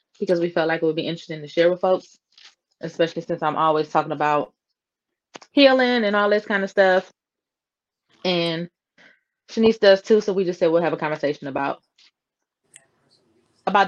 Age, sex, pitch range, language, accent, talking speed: 20-39, female, 160-195 Hz, English, American, 170 wpm